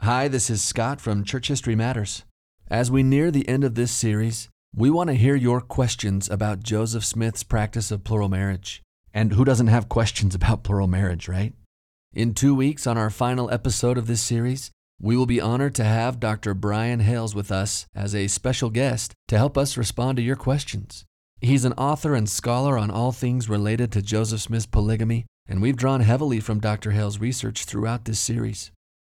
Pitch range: 105-125 Hz